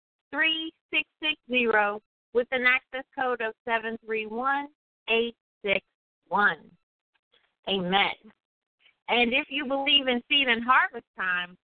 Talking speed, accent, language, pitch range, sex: 125 wpm, American, English, 215-285 Hz, female